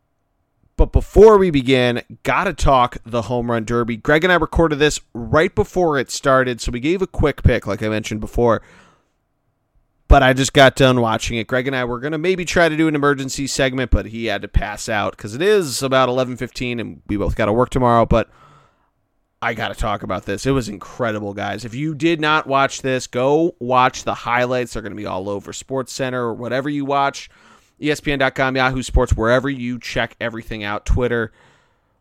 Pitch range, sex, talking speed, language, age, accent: 120-150 Hz, male, 205 wpm, English, 30-49, American